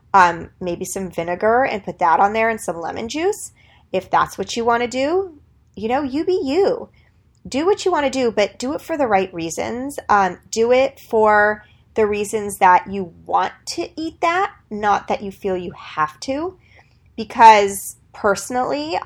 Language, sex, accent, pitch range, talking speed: English, female, American, 180-240 Hz, 185 wpm